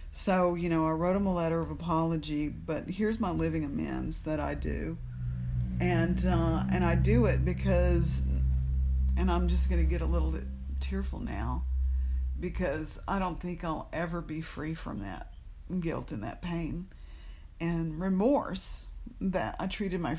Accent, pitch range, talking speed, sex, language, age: American, 135-185 Hz, 165 wpm, female, English, 50-69